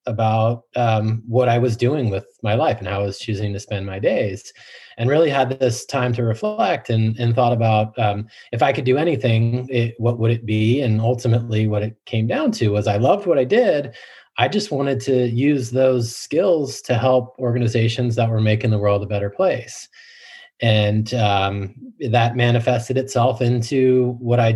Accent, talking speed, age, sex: American, 190 wpm, 30-49, male